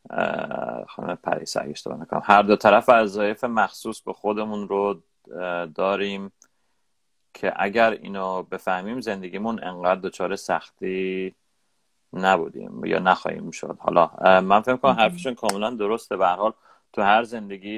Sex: male